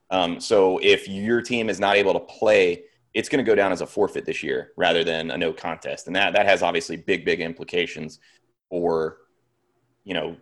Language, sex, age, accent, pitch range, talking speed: English, male, 30-49, American, 85-125 Hz, 205 wpm